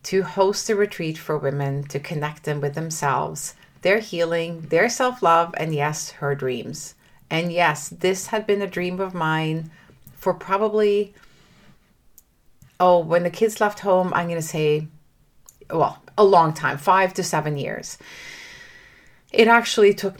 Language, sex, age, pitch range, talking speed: English, female, 30-49, 155-190 Hz, 150 wpm